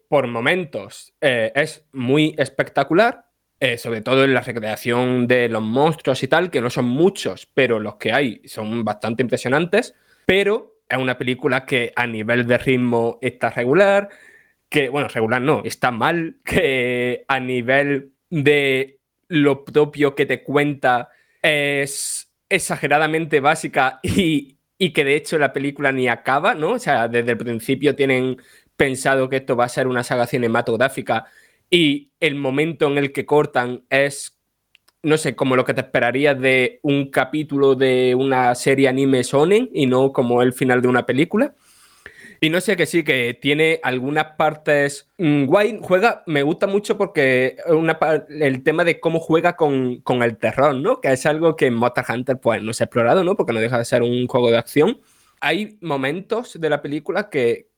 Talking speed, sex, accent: 175 wpm, male, Spanish